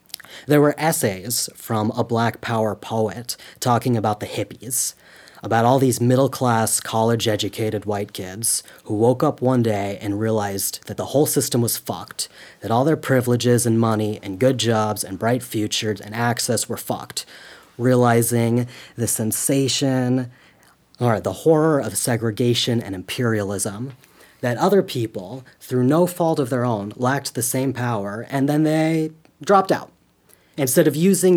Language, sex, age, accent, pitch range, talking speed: English, male, 30-49, American, 115-140 Hz, 150 wpm